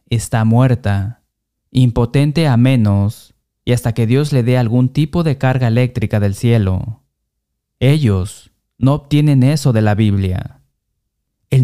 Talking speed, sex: 135 wpm, male